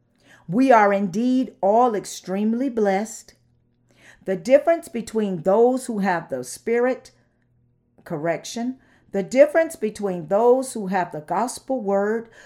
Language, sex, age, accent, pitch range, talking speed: English, female, 50-69, American, 165-235 Hz, 115 wpm